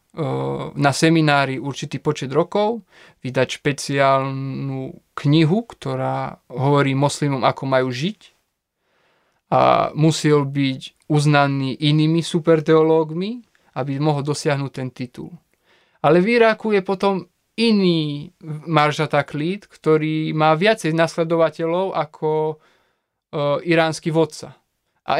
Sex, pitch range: male, 140-175 Hz